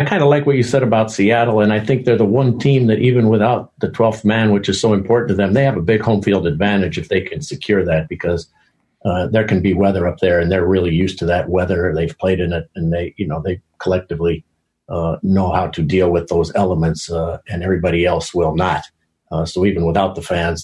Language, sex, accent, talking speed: English, male, American, 245 wpm